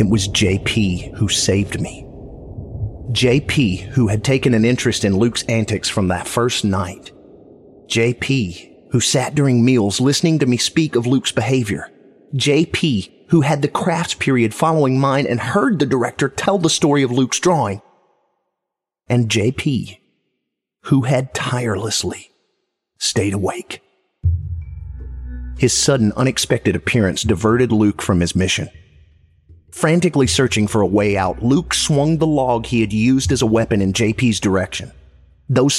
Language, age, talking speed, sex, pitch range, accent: English, 30-49, 145 wpm, male, 90-125 Hz, American